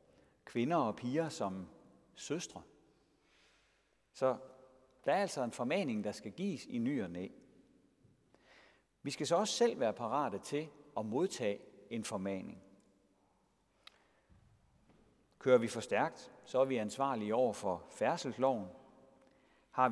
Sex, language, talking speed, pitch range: male, Danish, 125 wpm, 105-170 Hz